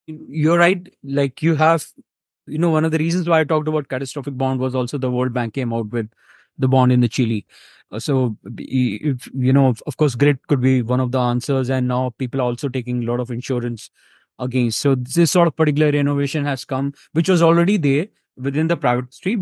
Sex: male